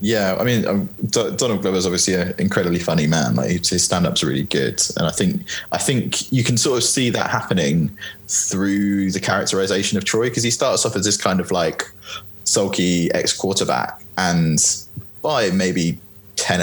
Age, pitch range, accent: 20-39, 90-110 Hz, British